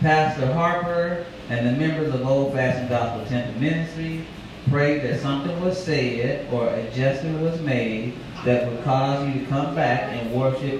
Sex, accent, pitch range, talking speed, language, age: male, American, 115-150 Hz, 160 wpm, English, 30-49